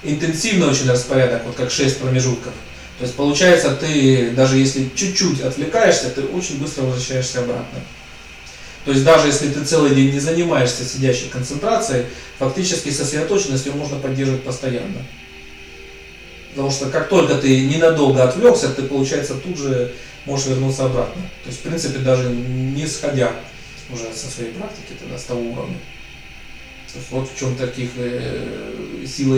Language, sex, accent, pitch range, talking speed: Russian, male, native, 125-145 Hz, 145 wpm